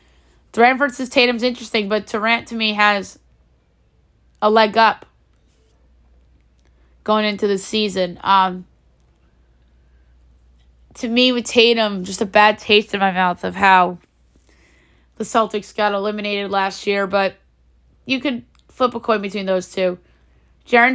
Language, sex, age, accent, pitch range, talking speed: English, female, 20-39, American, 185-225 Hz, 135 wpm